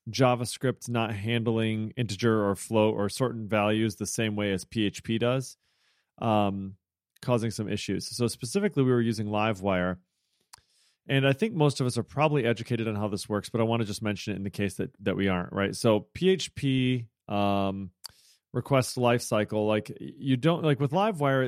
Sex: male